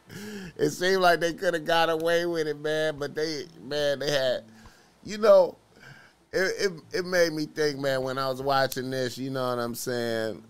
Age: 30-49